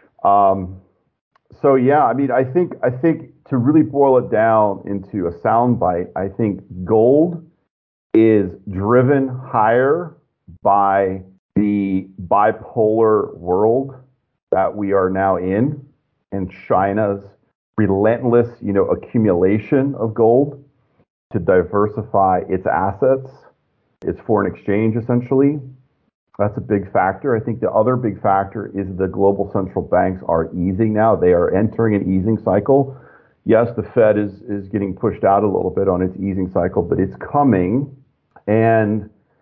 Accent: American